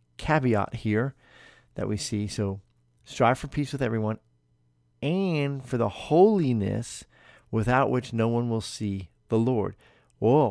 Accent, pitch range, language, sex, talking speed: American, 100-130 Hz, English, male, 135 wpm